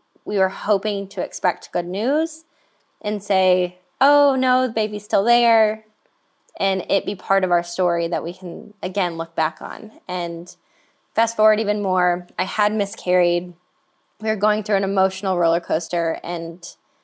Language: English